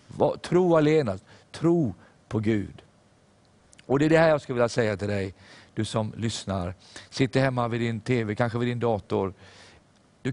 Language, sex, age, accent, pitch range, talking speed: English, male, 50-69, Swedish, 100-135 Hz, 175 wpm